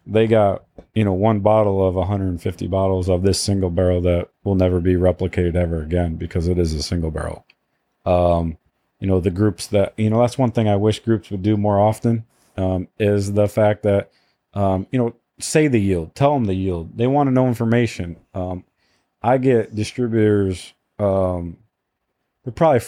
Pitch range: 95-115 Hz